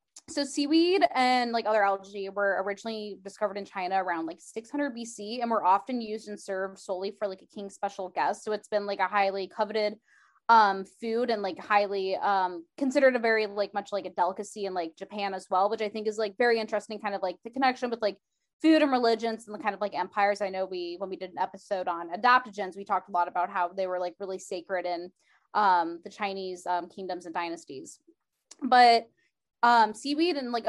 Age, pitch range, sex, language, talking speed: 10-29, 190-230 Hz, female, English, 215 wpm